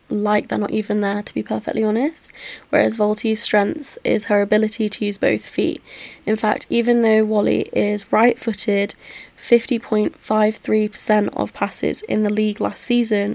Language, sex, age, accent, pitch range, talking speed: English, female, 10-29, British, 210-225 Hz, 155 wpm